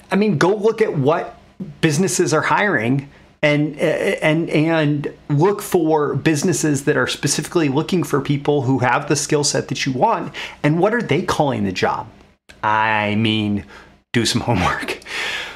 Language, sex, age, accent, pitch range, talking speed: English, male, 30-49, American, 120-150 Hz, 160 wpm